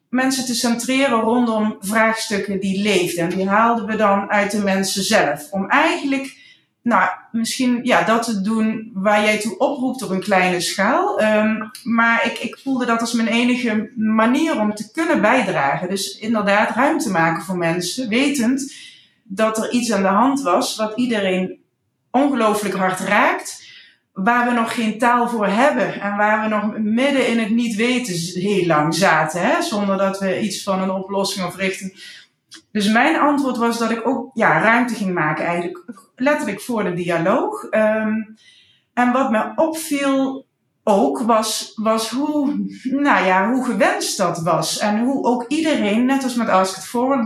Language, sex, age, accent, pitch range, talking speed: Dutch, female, 30-49, Dutch, 200-245 Hz, 170 wpm